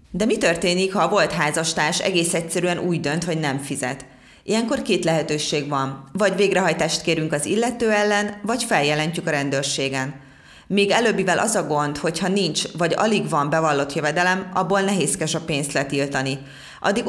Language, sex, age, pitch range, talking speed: Hungarian, female, 30-49, 145-190 Hz, 160 wpm